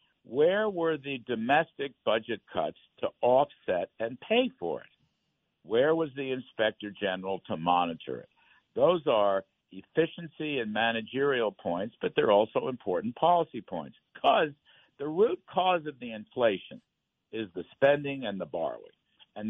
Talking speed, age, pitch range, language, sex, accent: 140 wpm, 60-79, 105-155 Hz, English, male, American